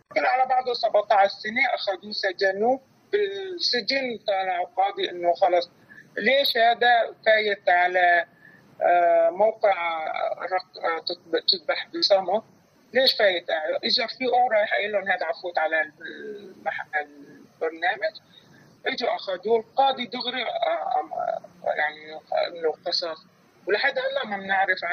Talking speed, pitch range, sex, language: 100 wpm, 185-270 Hz, male, Arabic